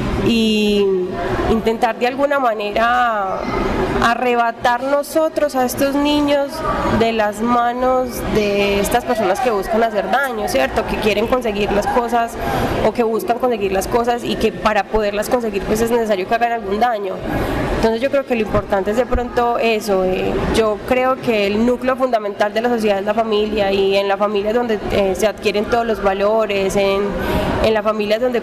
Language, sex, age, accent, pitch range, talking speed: Spanish, female, 20-39, Colombian, 205-240 Hz, 180 wpm